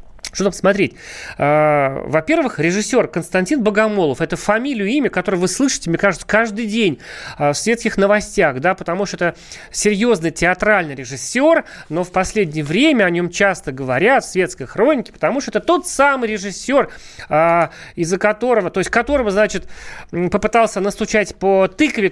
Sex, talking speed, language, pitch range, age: male, 145 wpm, Russian, 175-225 Hz, 30-49